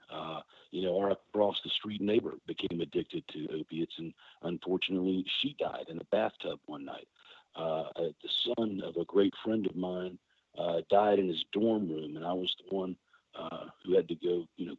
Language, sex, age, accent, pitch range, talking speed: English, male, 50-69, American, 90-110 Hz, 190 wpm